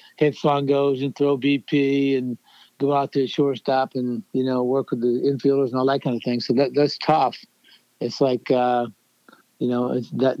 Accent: American